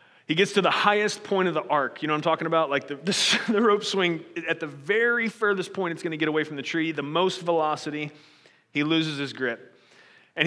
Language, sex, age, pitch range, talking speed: English, male, 30-49, 150-185 Hz, 240 wpm